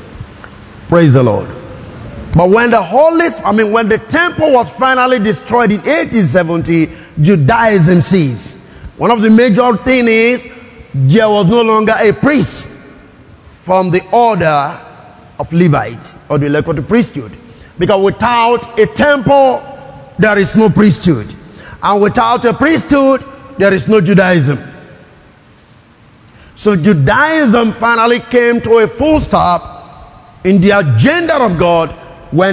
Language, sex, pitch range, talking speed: English, male, 150-215 Hz, 130 wpm